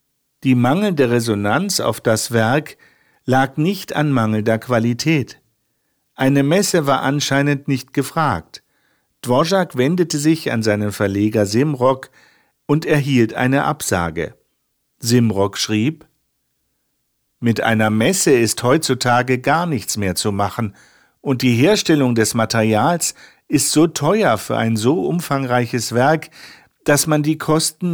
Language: German